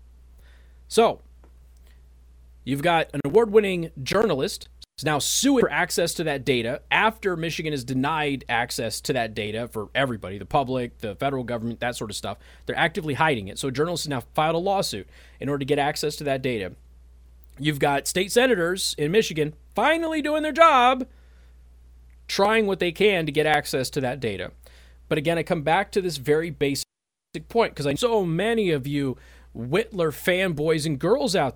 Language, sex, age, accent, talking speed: English, male, 30-49, American, 180 wpm